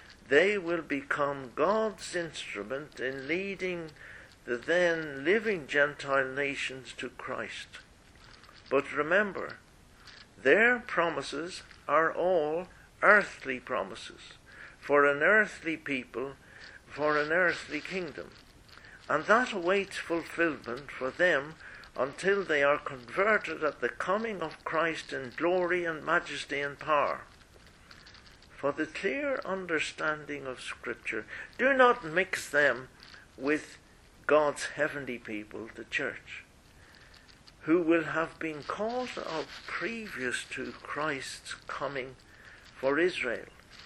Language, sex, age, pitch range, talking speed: English, male, 60-79, 135-185 Hz, 110 wpm